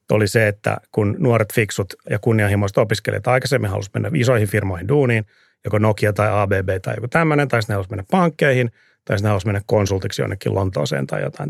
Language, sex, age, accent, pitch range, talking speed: Finnish, male, 30-49, native, 105-125 Hz, 190 wpm